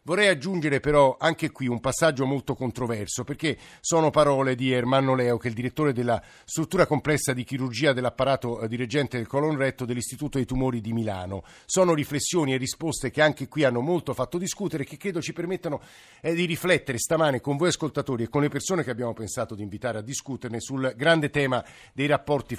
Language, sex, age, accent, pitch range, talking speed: Italian, male, 50-69, native, 120-155 Hz, 195 wpm